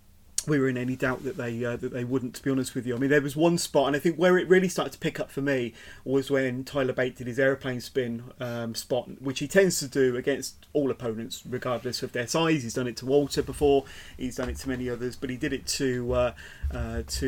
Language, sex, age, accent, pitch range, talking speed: English, male, 30-49, British, 125-150 Hz, 265 wpm